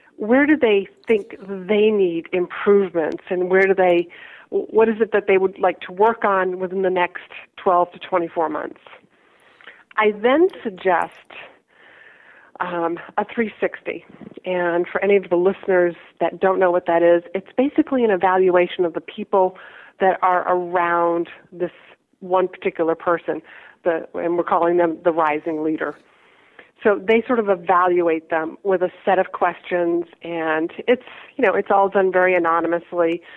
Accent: American